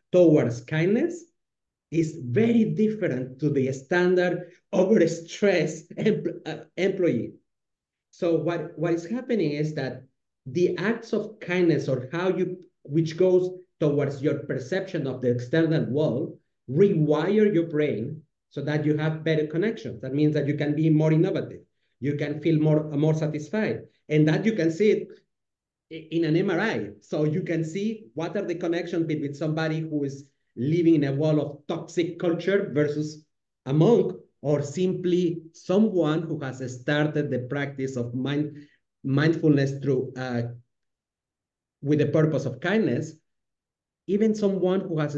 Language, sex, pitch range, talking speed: English, male, 145-175 Hz, 145 wpm